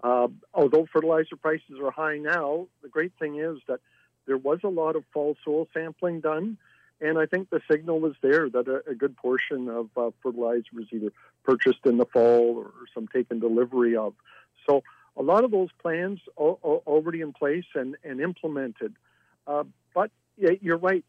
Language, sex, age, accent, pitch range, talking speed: English, male, 50-69, American, 135-170 Hz, 180 wpm